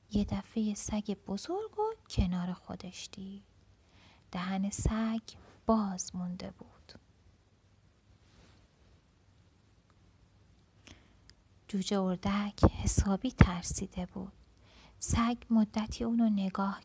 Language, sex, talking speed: Persian, female, 80 wpm